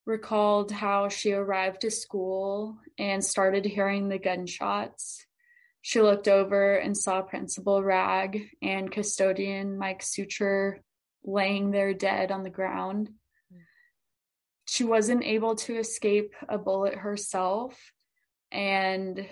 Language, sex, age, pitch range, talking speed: English, female, 20-39, 190-205 Hz, 115 wpm